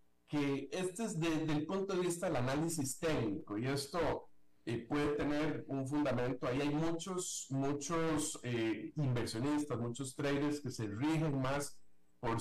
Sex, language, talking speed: male, Spanish, 150 wpm